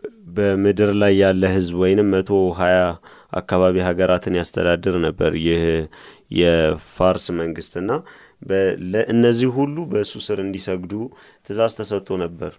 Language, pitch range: Amharic, 90-110 Hz